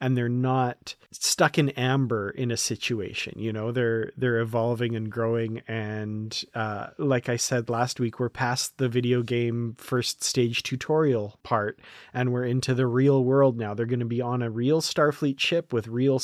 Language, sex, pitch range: English, male, 115-130 Hz